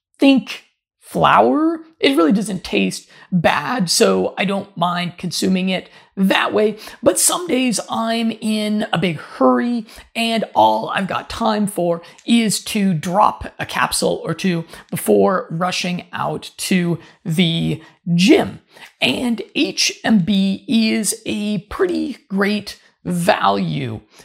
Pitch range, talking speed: 165-220 Hz, 120 wpm